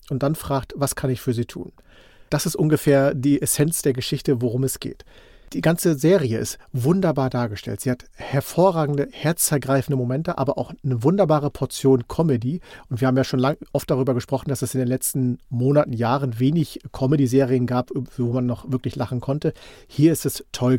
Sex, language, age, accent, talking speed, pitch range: male, German, 40-59, German, 185 wpm, 125-150 Hz